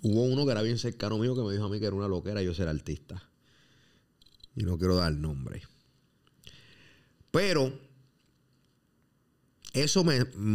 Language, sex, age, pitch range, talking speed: Spanish, male, 30-49, 100-155 Hz, 160 wpm